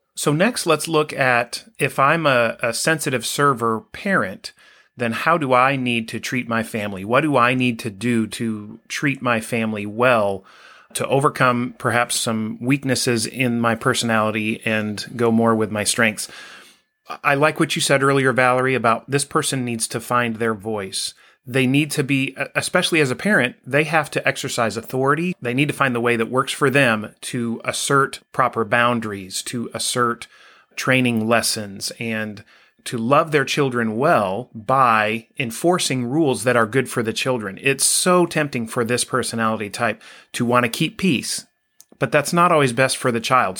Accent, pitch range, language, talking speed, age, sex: American, 115-140 Hz, English, 175 wpm, 30-49, male